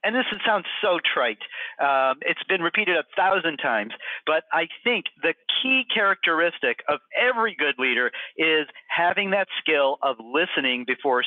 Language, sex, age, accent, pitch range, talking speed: English, male, 50-69, American, 140-215 Hz, 155 wpm